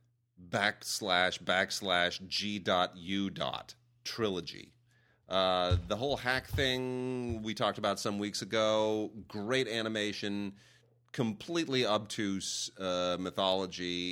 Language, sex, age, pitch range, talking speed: English, male, 30-49, 90-115 Hz, 90 wpm